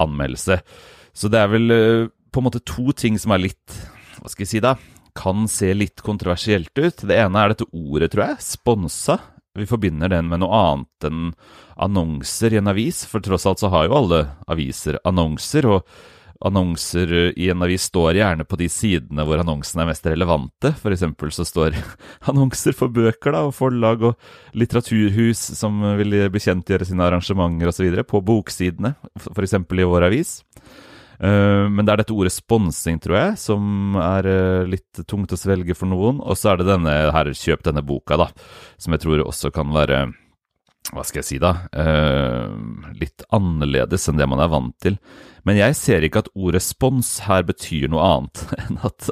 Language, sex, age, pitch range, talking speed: English, male, 30-49, 80-105 Hz, 185 wpm